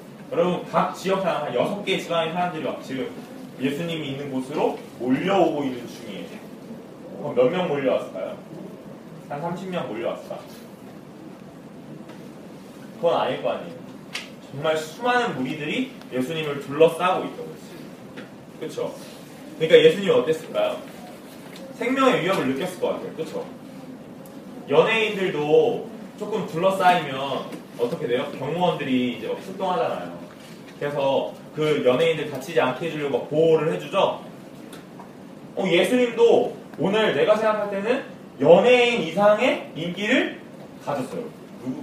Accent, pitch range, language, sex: native, 165-245 Hz, Korean, male